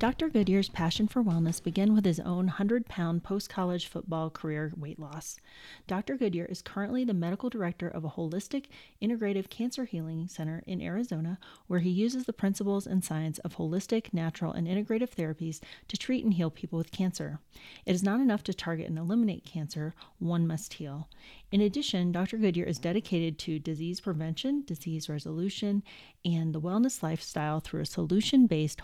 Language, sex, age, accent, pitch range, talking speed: English, female, 30-49, American, 170-215 Hz, 170 wpm